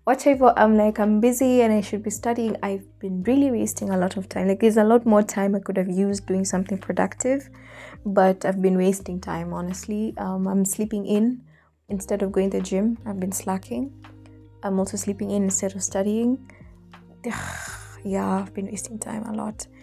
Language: English